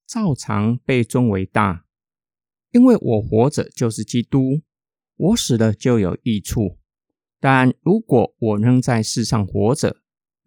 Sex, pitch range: male, 115-170 Hz